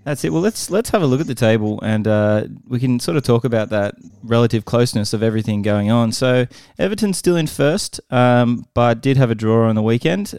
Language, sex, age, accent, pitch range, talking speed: English, male, 20-39, Australian, 100-125 Hz, 230 wpm